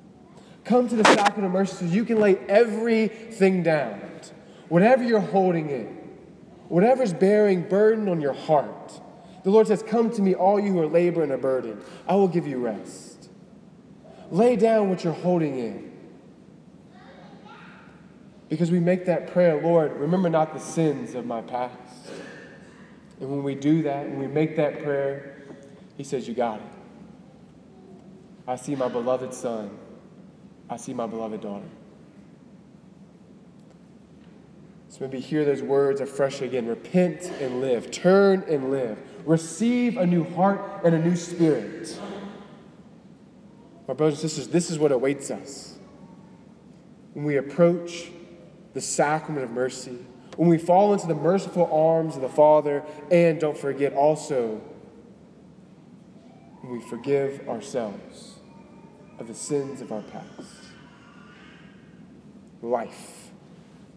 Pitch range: 140-200 Hz